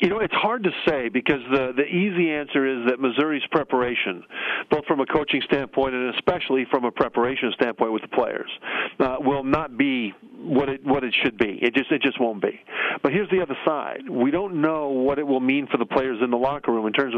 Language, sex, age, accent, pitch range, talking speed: English, male, 50-69, American, 130-150 Hz, 230 wpm